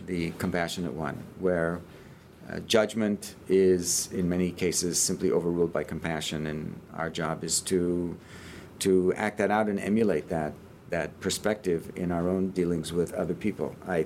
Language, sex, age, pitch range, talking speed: English, male, 50-69, 85-95 Hz, 155 wpm